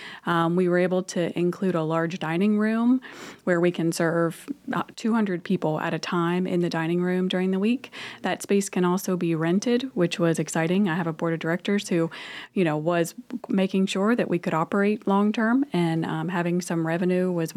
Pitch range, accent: 165-190 Hz, American